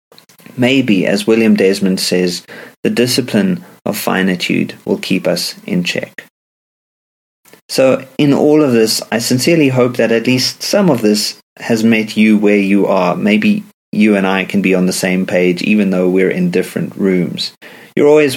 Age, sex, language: 30-49, male, English